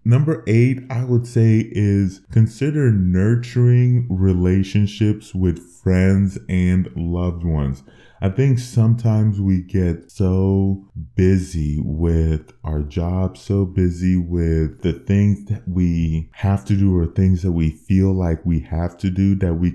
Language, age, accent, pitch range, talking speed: English, 20-39, American, 85-105 Hz, 140 wpm